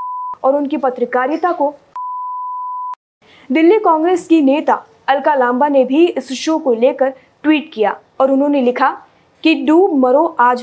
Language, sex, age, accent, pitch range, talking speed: Hindi, female, 20-39, native, 265-325 Hz, 140 wpm